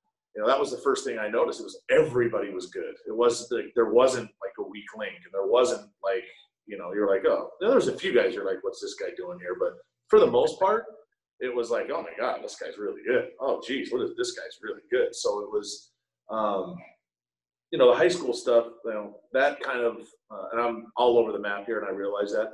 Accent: American